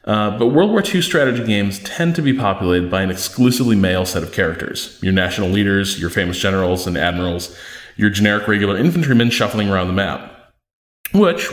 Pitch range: 95-125 Hz